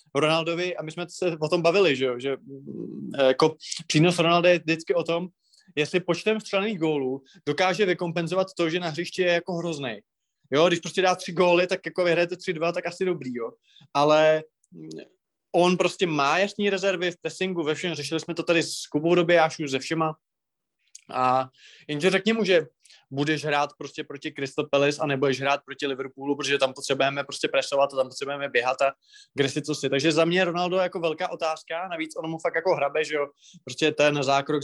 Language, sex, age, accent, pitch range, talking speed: Czech, male, 20-39, native, 140-175 Hz, 190 wpm